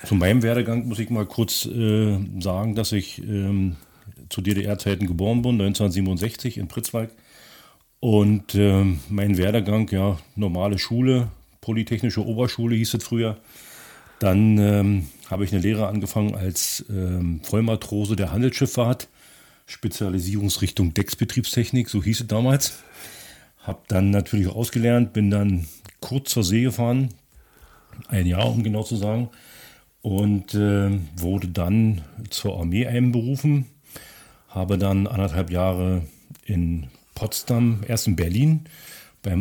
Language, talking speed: German, 125 wpm